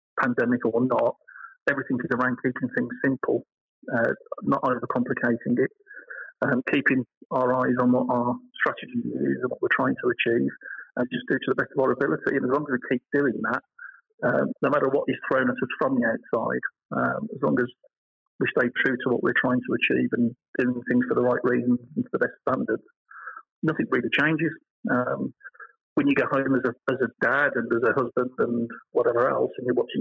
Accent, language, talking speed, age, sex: British, English, 210 wpm, 40-59, male